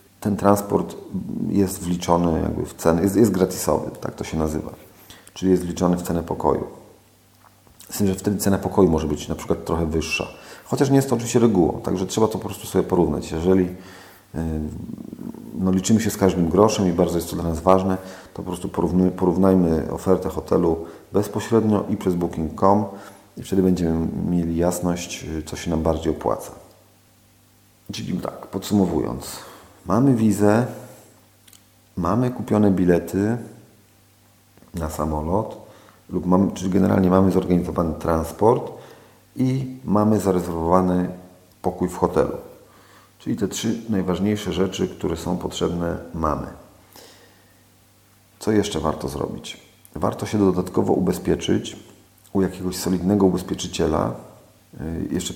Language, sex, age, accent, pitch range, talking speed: Polish, male, 40-59, native, 90-100 Hz, 130 wpm